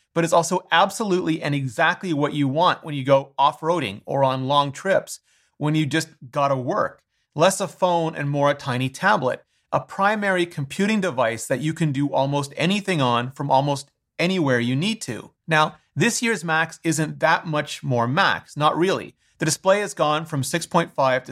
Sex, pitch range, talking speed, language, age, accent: male, 140-180 Hz, 185 wpm, English, 30-49, American